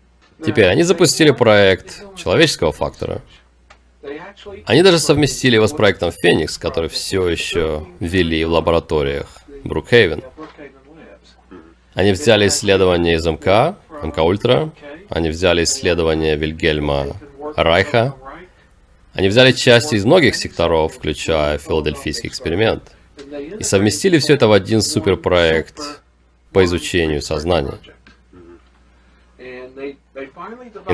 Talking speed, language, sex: 105 wpm, Russian, male